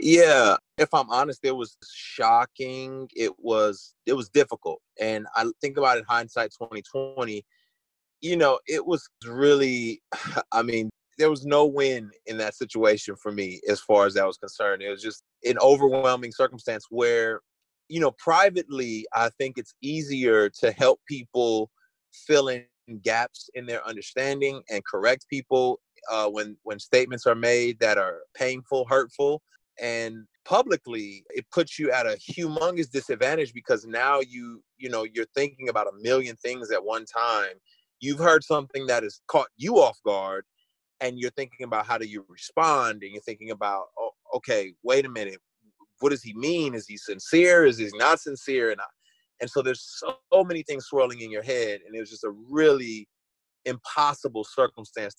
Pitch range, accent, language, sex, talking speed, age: 110-145 Hz, American, English, male, 170 wpm, 30-49